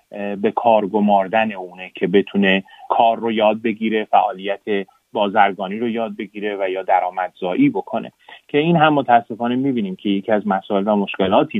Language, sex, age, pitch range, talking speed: Persian, male, 30-49, 100-120 Hz, 155 wpm